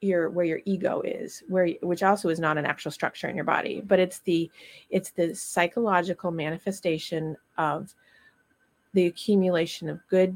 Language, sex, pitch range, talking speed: English, female, 170-210 Hz, 160 wpm